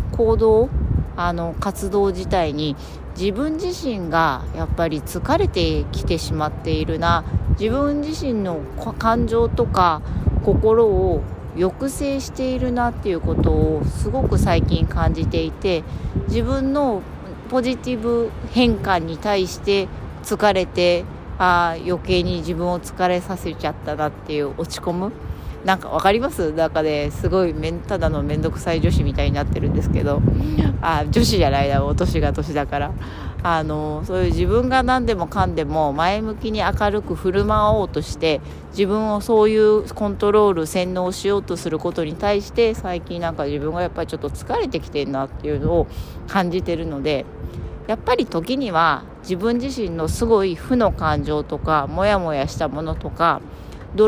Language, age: Japanese, 40-59